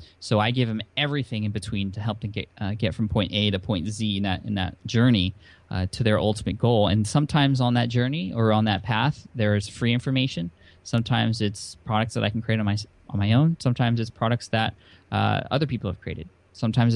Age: 10-29